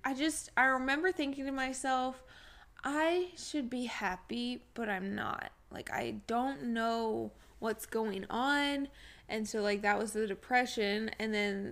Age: 10-29